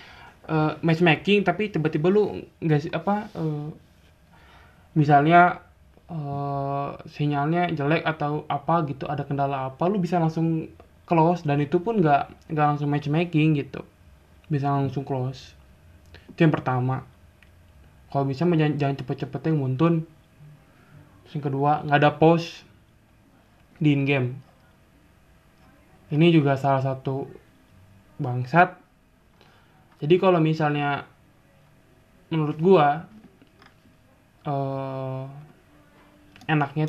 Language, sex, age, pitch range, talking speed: Indonesian, male, 20-39, 115-160 Hz, 100 wpm